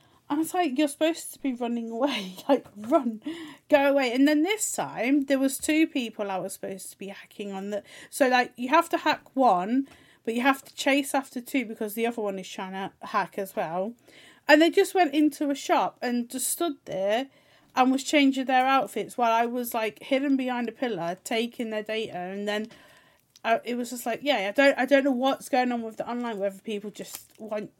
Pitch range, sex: 200-280 Hz, female